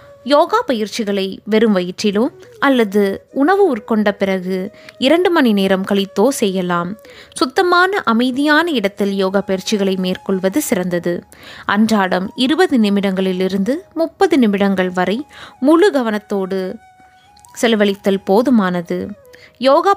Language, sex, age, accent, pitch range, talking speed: Tamil, female, 20-39, native, 195-255 Hz, 95 wpm